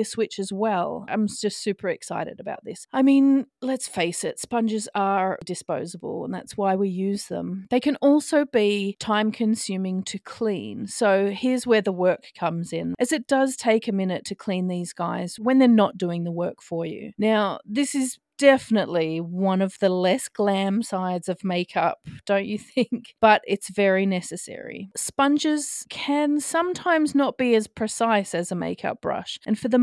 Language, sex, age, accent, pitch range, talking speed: English, female, 30-49, Australian, 185-245 Hz, 180 wpm